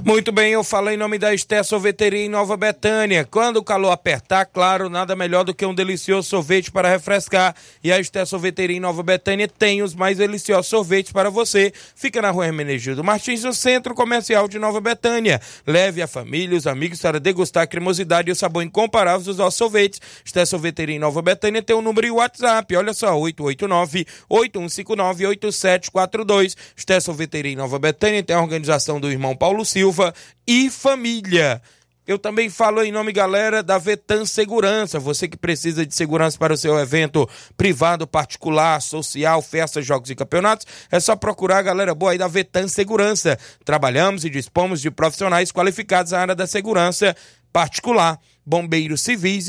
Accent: Brazilian